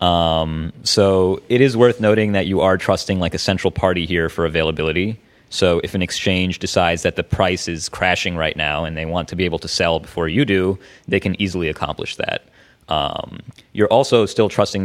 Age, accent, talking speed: 30-49, American, 200 wpm